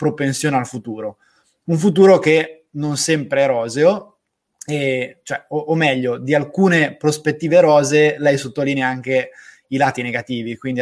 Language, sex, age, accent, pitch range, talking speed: Italian, male, 20-39, native, 130-155 Hz, 145 wpm